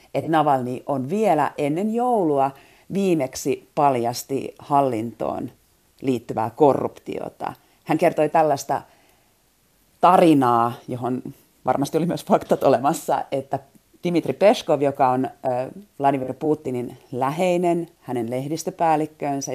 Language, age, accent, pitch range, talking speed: Finnish, 40-59, native, 120-155 Hz, 95 wpm